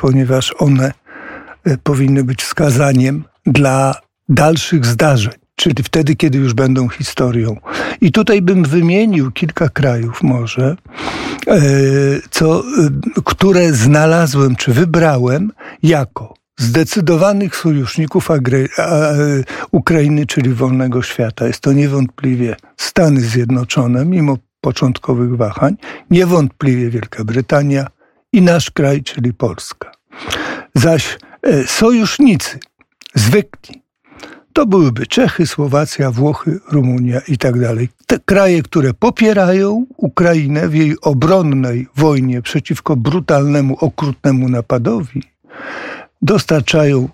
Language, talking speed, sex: Polish, 95 wpm, male